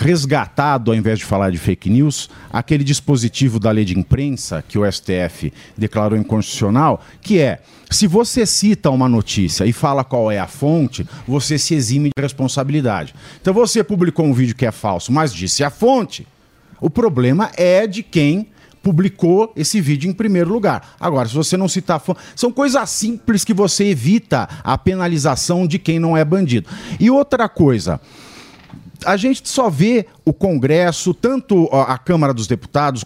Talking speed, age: 170 wpm, 50-69